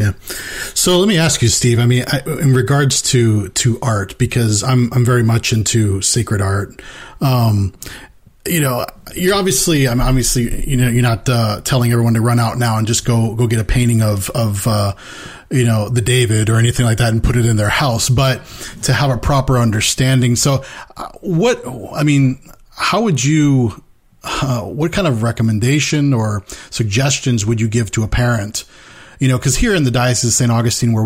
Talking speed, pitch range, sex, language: 195 wpm, 115-130 Hz, male, English